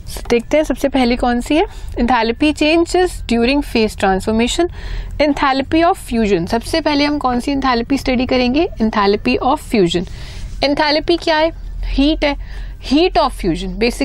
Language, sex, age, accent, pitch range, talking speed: Hindi, female, 30-49, native, 215-295 Hz, 115 wpm